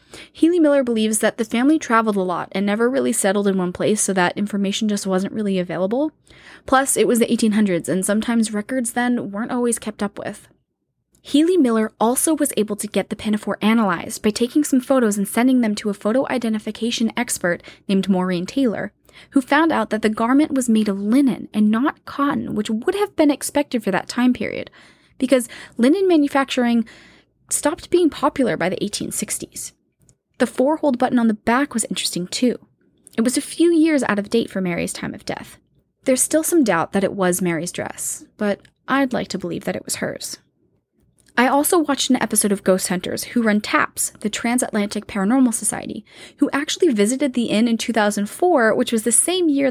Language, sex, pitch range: English, female, 205-265 Hz